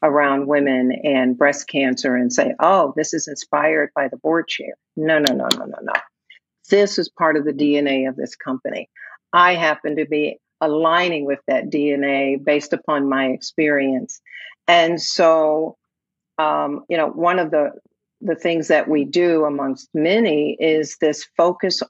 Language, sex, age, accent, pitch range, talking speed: English, female, 50-69, American, 150-185 Hz, 165 wpm